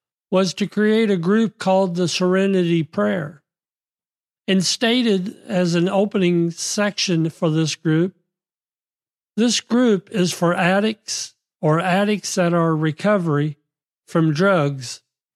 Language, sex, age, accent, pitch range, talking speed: English, male, 50-69, American, 155-195 Hz, 115 wpm